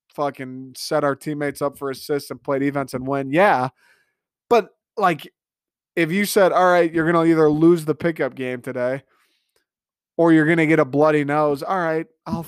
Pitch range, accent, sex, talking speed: 140-170 Hz, American, male, 190 wpm